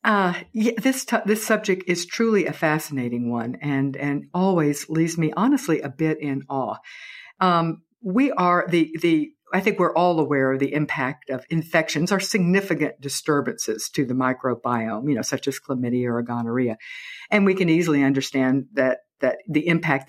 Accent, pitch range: American, 130-180 Hz